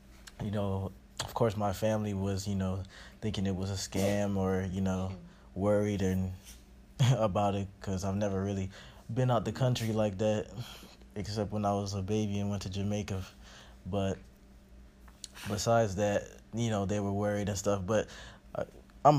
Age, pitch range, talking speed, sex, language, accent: 20-39, 95-110 Hz, 165 wpm, male, English, American